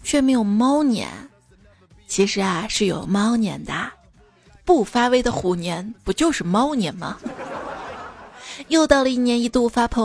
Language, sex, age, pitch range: Chinese, female, 20-39, 200-260 Hz